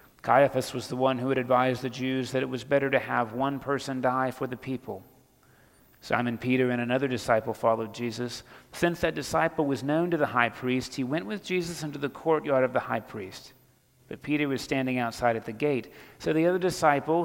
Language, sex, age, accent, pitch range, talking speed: English, male, 40-59, American, 130-170 Hz, 210 wpm